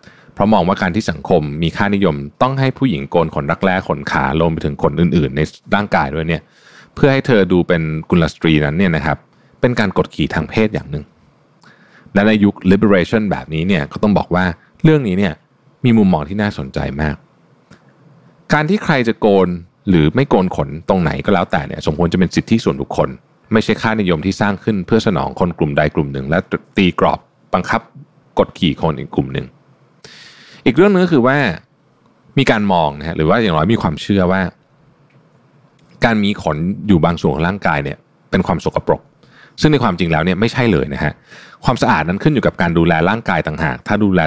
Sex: male